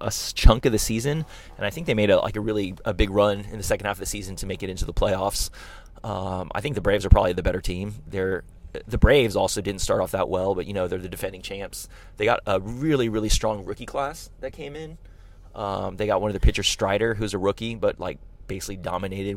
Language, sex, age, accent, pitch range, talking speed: English, male, 20-39, American, 95-115 Hz, 255 wpm